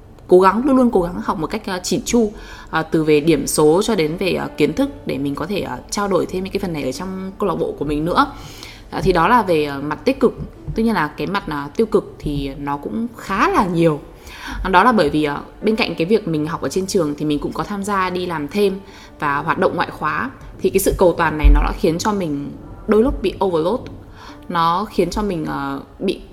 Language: Vietnamese